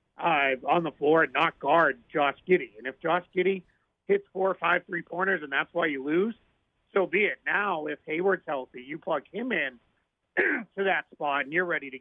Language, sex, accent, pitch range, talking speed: English, male, American, 145-185 Hz, 205 wpm